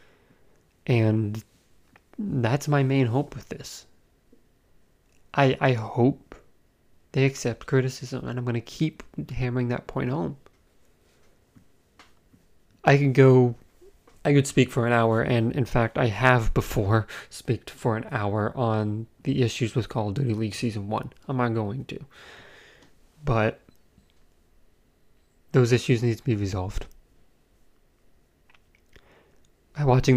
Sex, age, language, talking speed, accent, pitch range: male, 20-39, English, 125 wpm, American, 110-130 Hz